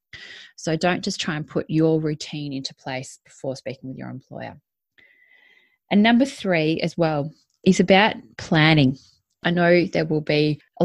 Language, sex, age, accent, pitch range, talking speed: English, female, 20-39, Australian, 150-190 Hz, 160 wpm